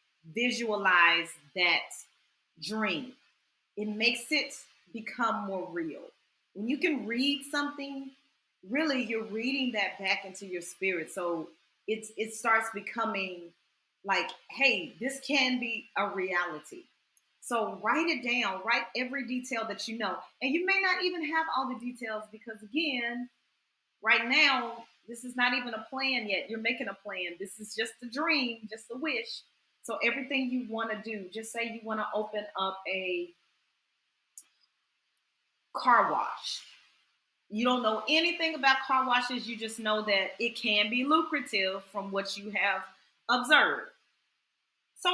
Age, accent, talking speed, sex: 40-59, American, 150 wpm, female